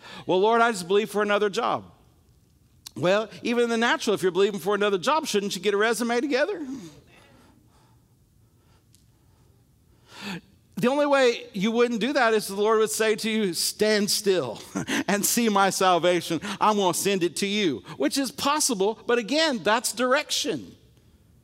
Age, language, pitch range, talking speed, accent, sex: 50-69, English, 150-230 Hz, 160 wpm, American, male